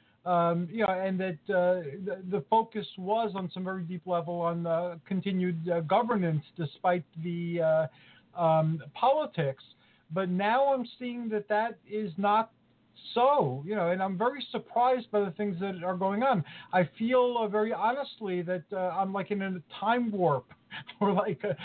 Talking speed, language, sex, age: 170 wpm, English, male, 50-69